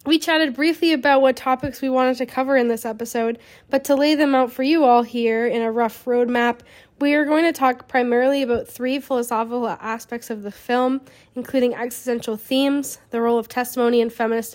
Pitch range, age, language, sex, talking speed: 225-260 Hz, 10-29, English, female, 200 wpm